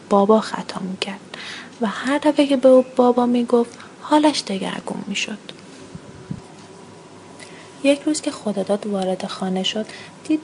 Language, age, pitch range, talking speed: Persian, 30-49, 195-245 Hz, 125 wpm